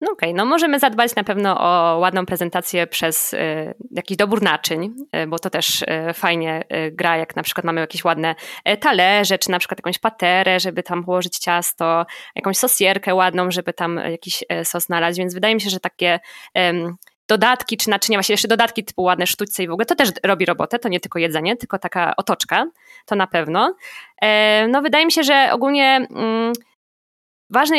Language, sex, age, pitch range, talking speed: Polish, female, 20-39, 175-230 Hz, 175 wpm